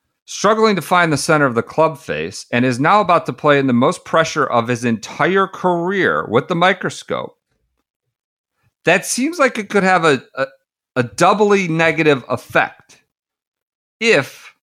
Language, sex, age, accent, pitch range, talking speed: English, male, 50-69, American, 150-220 Hz, 160 wpm